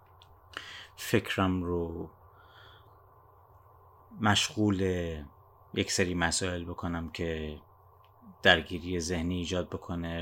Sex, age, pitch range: male, 30-49, 90-105 Hz